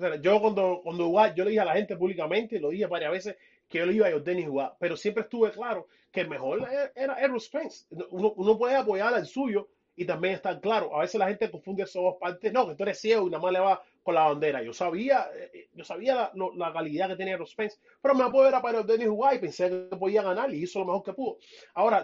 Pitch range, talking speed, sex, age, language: 180-230 Hz, 255 wpm, male, 30-49, Spanish